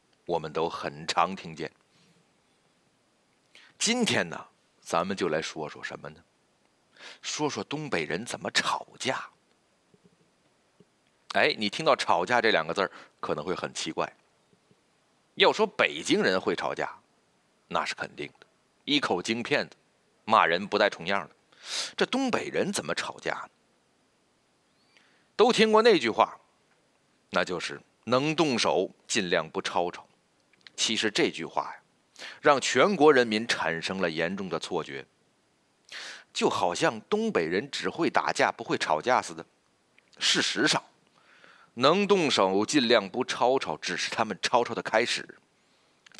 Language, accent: Chinese, native